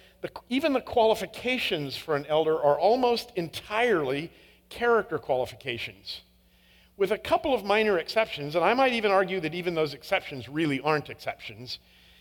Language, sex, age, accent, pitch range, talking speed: English, male, 50-69, American, 160-225 Hz, 145 wpm